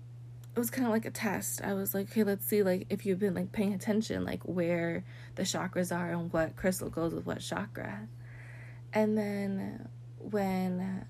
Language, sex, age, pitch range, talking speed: English, female, 20-39, 120-180 Hz, 190 wpm